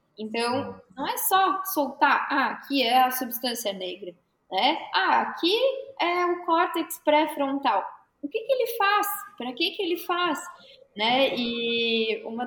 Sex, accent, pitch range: female, Brazilian, 235-320 Hz